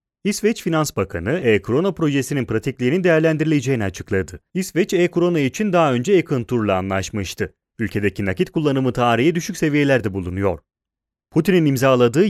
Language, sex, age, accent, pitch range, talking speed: Italian, male, 30-49, Turkish, 110-165 Hz, 115 wpm